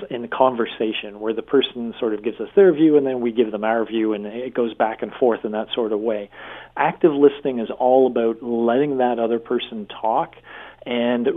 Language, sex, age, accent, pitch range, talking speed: English, male, 40-59, American, 115-130 Hz, 215 wpm